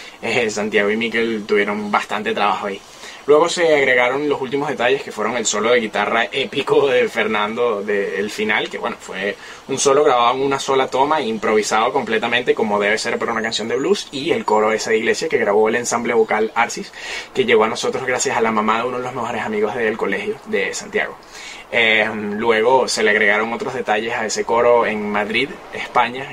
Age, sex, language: 20-39, male, Spanish